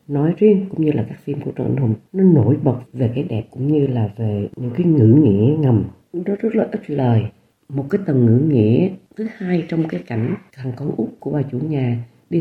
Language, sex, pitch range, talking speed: Vietnamese, female, 120-180 Hz, 230 wpm